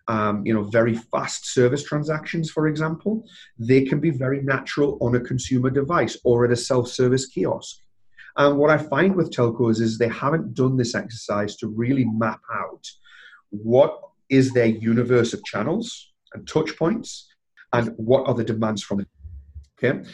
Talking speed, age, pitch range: 165 wpm, 30-49, 110-135 Hz